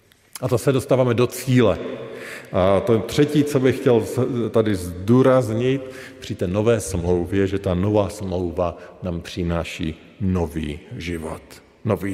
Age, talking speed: 40-59, 135 wpm